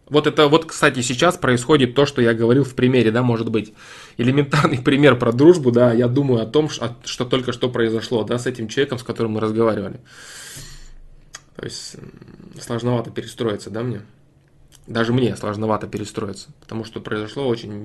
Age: 20-39